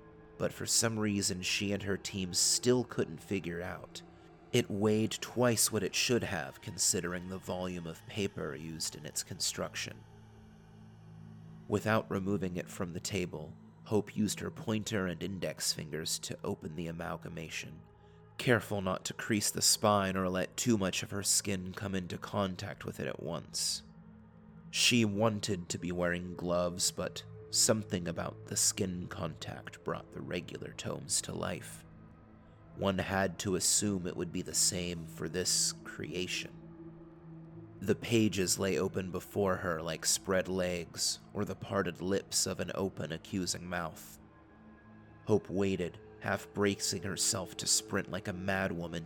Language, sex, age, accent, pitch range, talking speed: English, male, 30-49, American, 90-110 Hz, 150 wpm